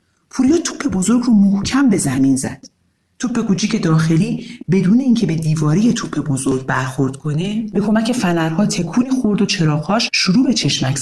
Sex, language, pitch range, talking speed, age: male, Persian, 160-230 Hz, 160 wpm, 40-59